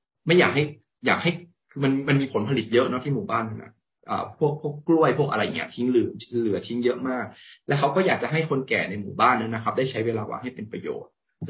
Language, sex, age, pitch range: Thai, male, 20-39, 115-155 Hz